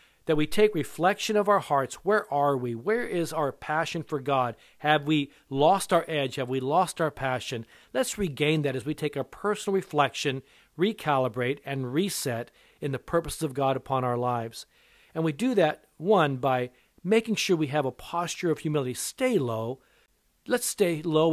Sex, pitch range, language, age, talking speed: male, 135-180 Hz, English, 50-69, 185 wpm